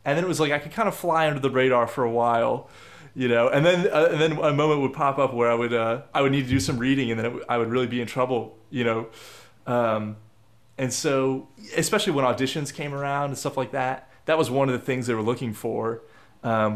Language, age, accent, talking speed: English, 20-39, American, 265 wpm